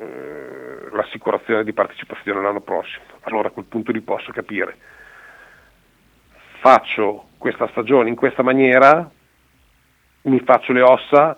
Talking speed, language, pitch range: 115 wpm, Italian, 105-140 Hz